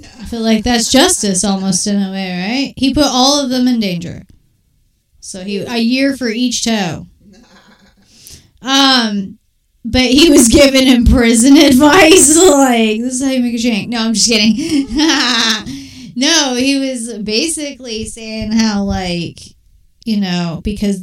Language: English